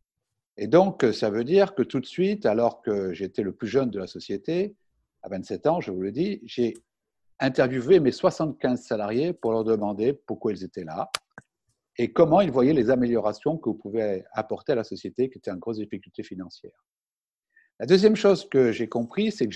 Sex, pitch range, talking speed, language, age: male, 110-175 Hz, 195 wpm, French, 60-79